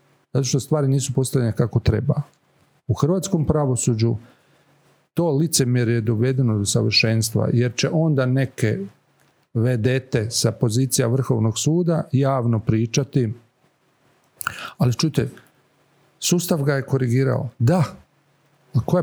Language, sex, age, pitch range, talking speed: Croatian, male, 40-59, 125-155 Hz, 110 wpm